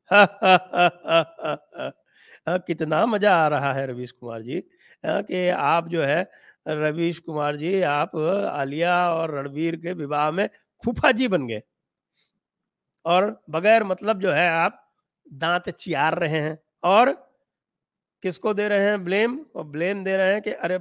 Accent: Indian